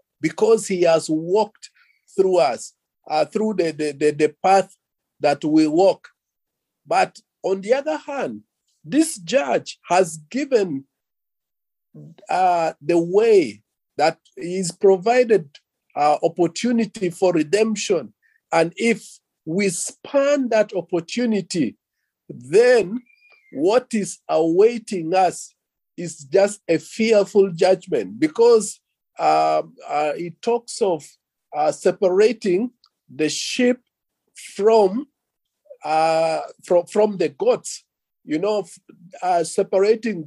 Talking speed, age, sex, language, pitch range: 105 wpm, 50-69, male, English, 170-235 Hz